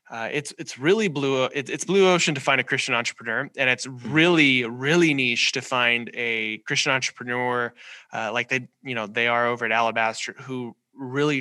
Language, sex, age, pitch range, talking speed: English, male, 20-39, 110-130 Hz, 185 wpm